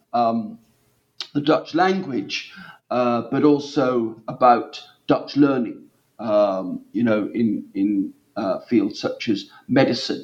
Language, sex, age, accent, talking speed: English, male, 50-69, British, 115 wpm